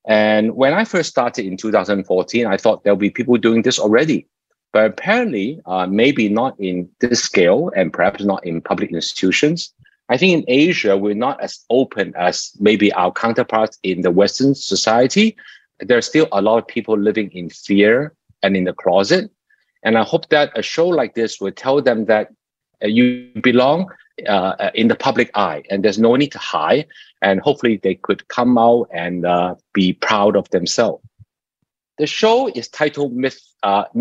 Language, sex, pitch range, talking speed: English, male, 100-135 Hz, 180 wpm